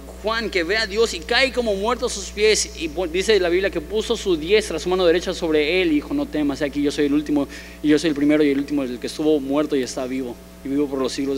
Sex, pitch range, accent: male, 135-215 Hz, Mexican